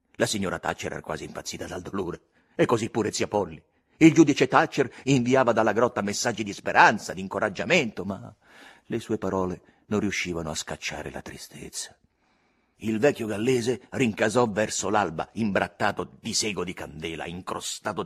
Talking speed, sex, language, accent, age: 155 wpm, male, Italian, native, 50-69